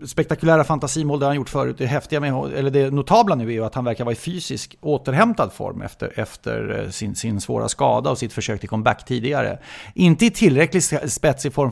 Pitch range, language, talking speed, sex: 120-160 Hz, English, 200 wpm, male